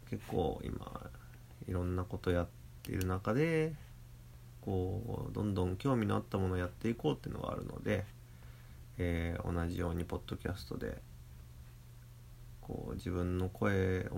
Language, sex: Japanese, male